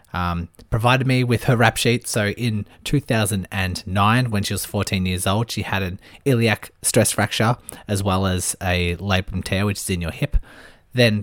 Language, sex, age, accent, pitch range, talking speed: English, male, 20-39, Australian, 90-110 Hz, 180 wpm